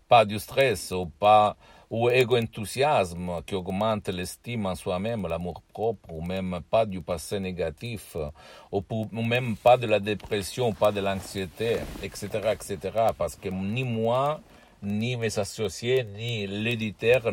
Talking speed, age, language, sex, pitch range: 140 wpm, 60-79, Italian, male, 90-110 Hz